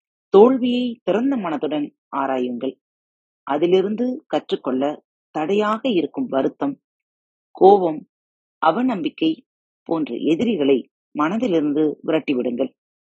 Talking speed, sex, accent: 70 wpm, female, native